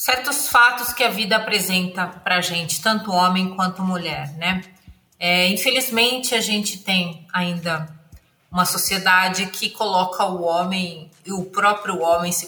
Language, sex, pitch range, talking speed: Portuguese, female, 180-225 Hz, 145 wpm